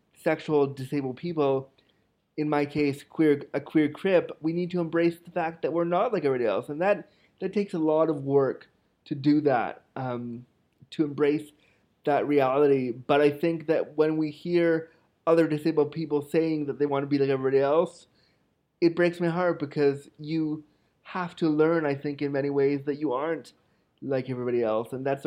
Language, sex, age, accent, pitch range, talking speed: English, male, 30-49, American, 135-160 Hz, 190 wpm